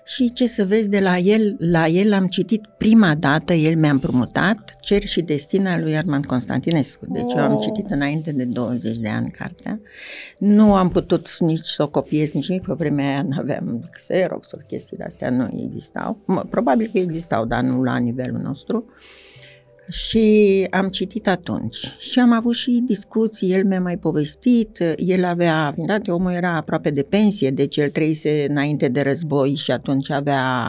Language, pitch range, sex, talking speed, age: Romanian, 145-200 Hz, female, 175 wpm, 60-79